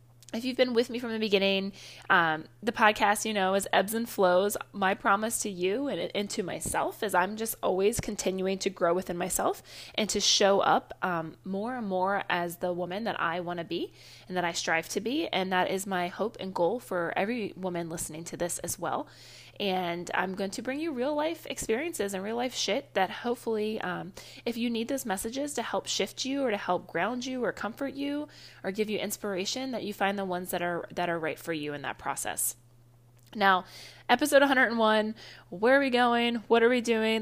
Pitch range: 175-225 Hz